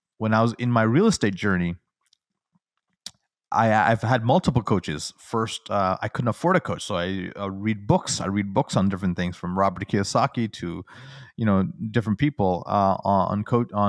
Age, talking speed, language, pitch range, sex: 30-49, 180 wpm, English, 100-120 Hz, male